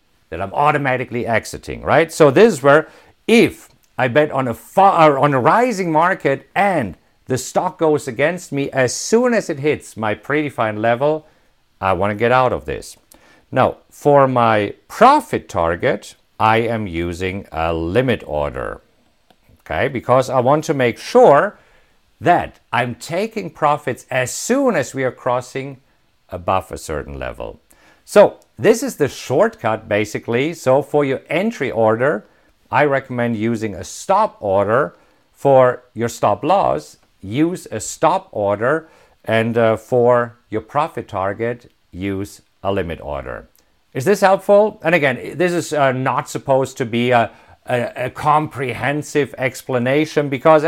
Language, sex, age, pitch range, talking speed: English, male, 50-69, 115-150 Hz, 145 wpm